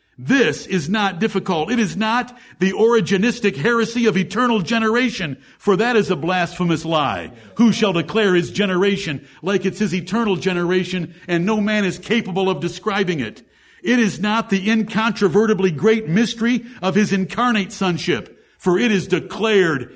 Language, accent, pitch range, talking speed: English, American, 185-225 Hz, 155 wpm